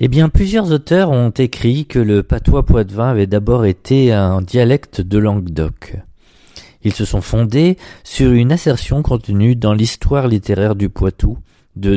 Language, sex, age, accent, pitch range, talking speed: French, male, 40-59, French, 100-130 Hz, 155 wpm